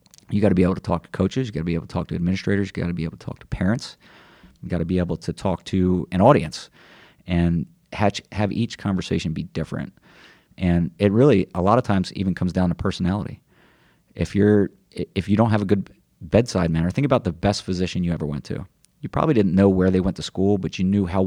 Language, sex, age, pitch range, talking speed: English, male, 30-49, 85-100 Hz, 245 wpm